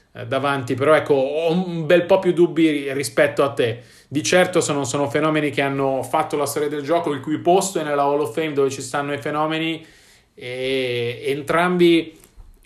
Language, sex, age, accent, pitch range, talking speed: Italian, male, 30-49, native, 130-150 Hz, 185 wpm